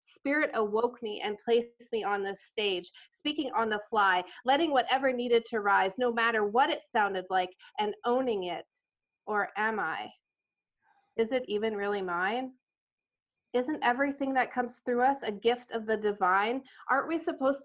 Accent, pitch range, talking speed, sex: American, 210-255 Hz, 165 wpm, female